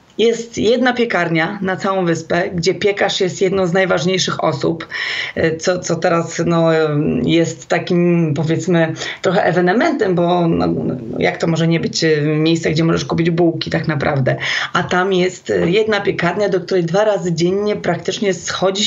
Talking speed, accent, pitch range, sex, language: 155 wpm, native, 170-200 Hz, female, Polish